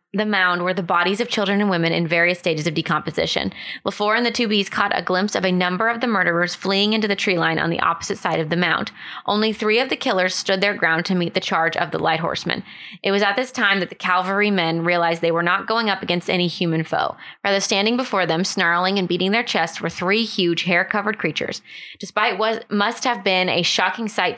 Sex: female